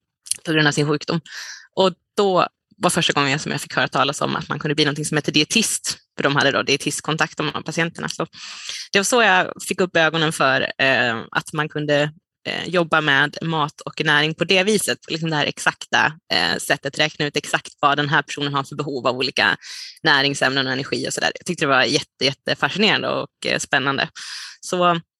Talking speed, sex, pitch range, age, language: 195 wpm, female, 150-175 Hz, 20-39, Swedish